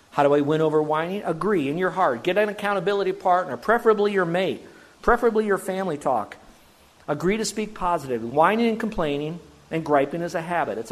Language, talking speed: English, 185 wpm